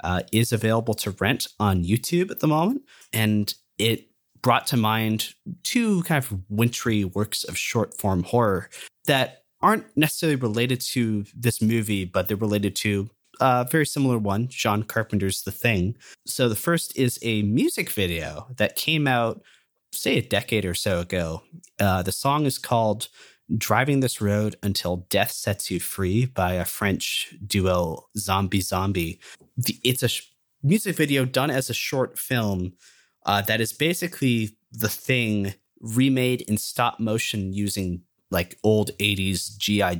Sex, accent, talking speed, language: male, American, 150 wpm, English